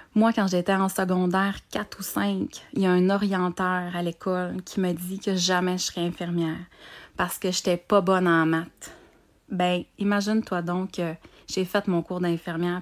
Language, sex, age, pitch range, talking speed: French, female, 30-49, 160-190 Hz, 185 wpm